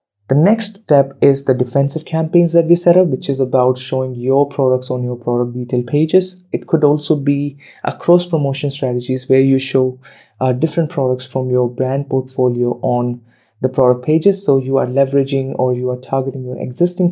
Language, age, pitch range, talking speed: English, 20-39, 125-145 Hz, 190 wpm